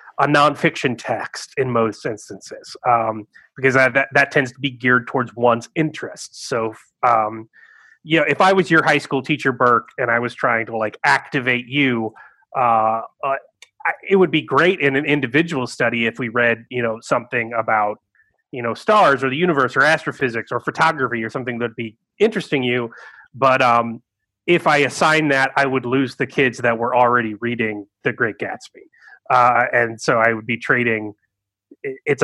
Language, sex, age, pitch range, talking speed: English, male, 30-49, 115-150 Hz, 180 wpm